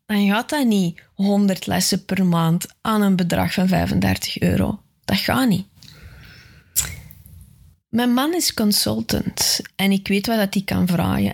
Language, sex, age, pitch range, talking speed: Dutch, female, 20-39, 175-200 Hz, 150 wpm